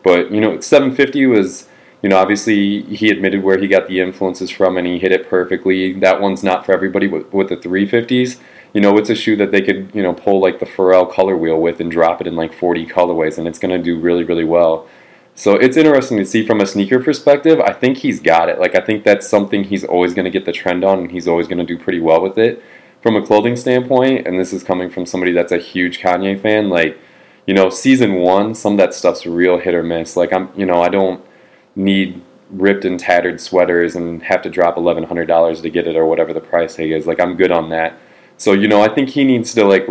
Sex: male